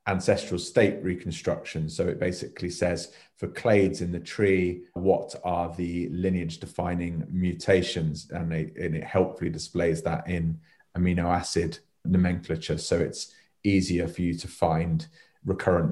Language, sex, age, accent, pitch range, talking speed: English, male, 30-49, British, 85-95 Hz, 135 wpm